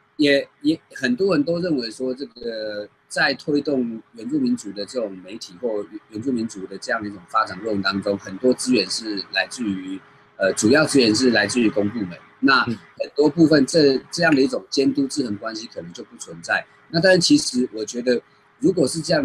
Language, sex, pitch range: Chinese, male, 110-160 Hz